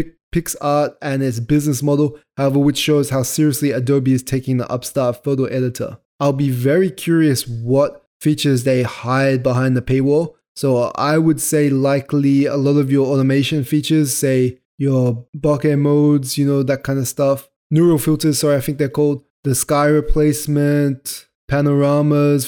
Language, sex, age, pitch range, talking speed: English, male, 20-39, 130-150 Hz, 160 wpm